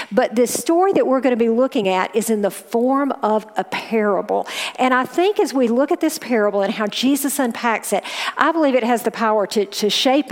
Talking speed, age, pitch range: 235 wpm, 50-69, 215-275 Hz